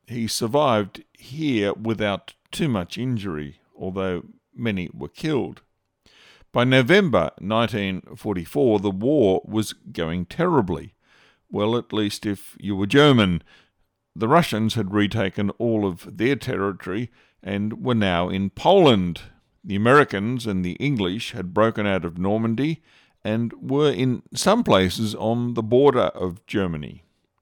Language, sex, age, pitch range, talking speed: English, male, 50-69, 95-120 Hz, 130 wpm